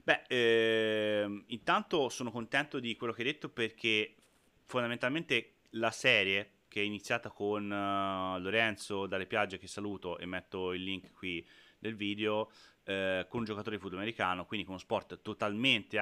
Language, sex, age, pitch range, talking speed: Italian, male, 30-49, 100-120 Hz, 160 wpm